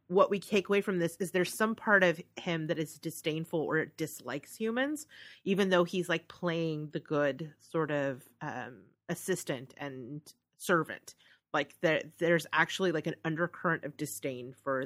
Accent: American